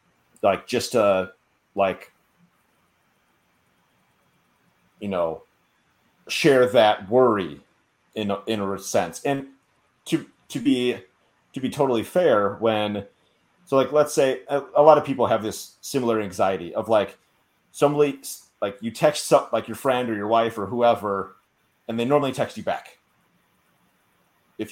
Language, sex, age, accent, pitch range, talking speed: English, male, 30-49, American, 100-135 Hz, 140 wpm